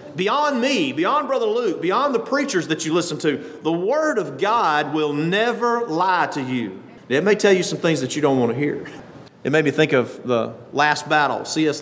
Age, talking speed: 40-59, 215 wpm